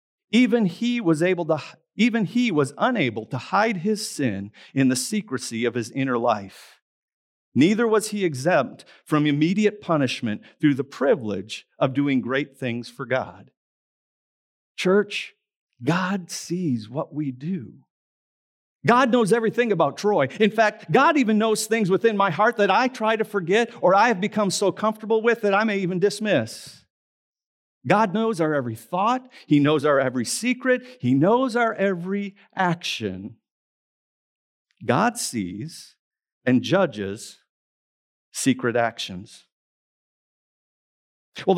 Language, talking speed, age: English, 135 wpm, 50-69